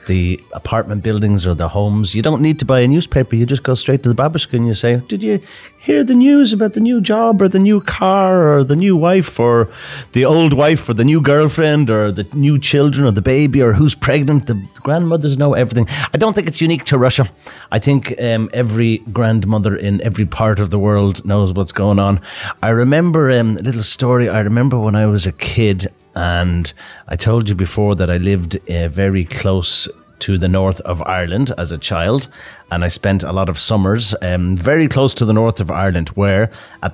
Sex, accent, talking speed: male, Irish, 220 wpm